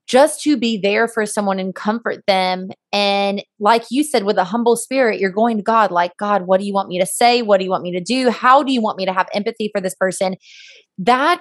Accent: American